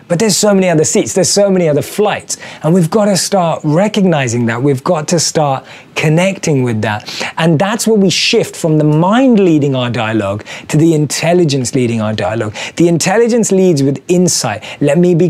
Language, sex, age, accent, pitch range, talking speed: English, male, 20-39, British, 145-200 Hz, 195 wpm